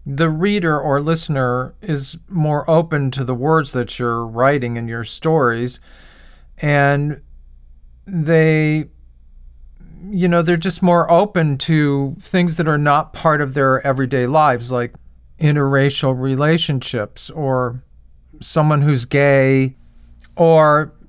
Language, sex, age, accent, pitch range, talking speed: English, male, 50-69, American, 115-150 Hz, 120 wpm